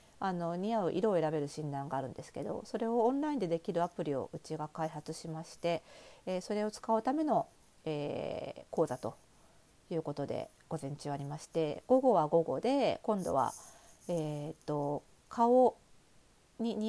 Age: 40-59